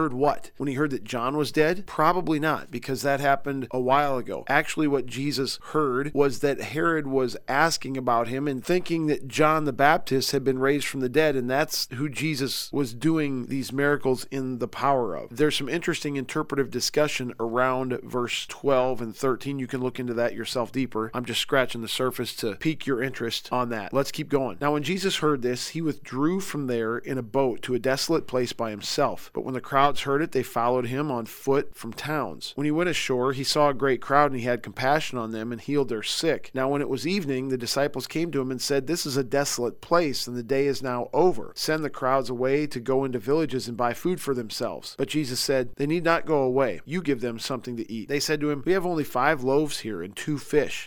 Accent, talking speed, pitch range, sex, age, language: American, 230 wpm, 125-150 Hz, male, 40-59, English